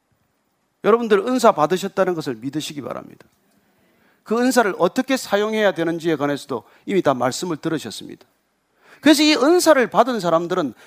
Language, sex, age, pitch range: Korean, male, 40-59, 180-290 Hz